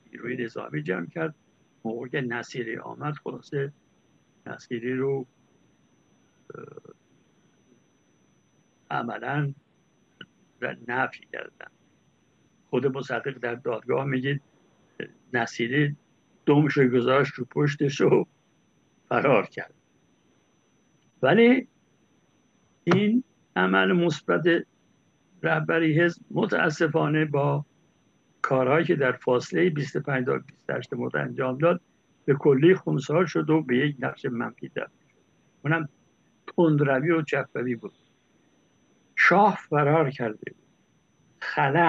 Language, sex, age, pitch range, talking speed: Persian, male, 60-79, 130-160 Hz, 90 wpm